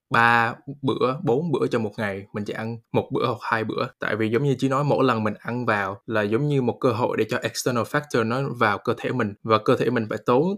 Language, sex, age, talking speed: Vietnamese, male, 20-39, 265 wpm